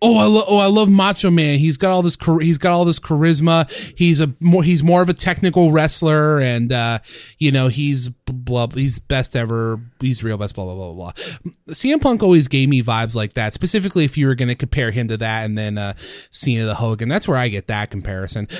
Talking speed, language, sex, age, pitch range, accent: 230 wpm, English, male, 30-49, 125-180 Hz, American